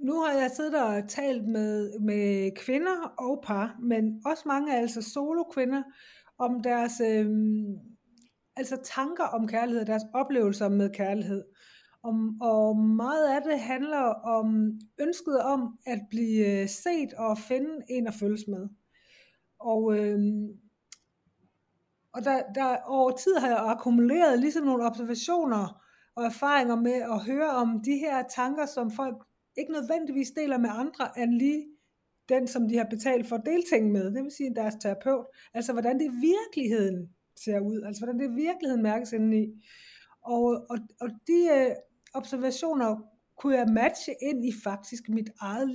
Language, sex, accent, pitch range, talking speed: Danish, female, native, 220-275 Hz, 150 wpm